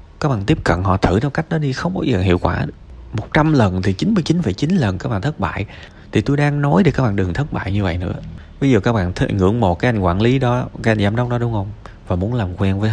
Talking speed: 280 wpm